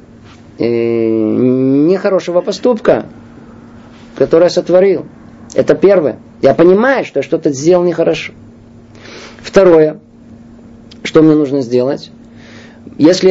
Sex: male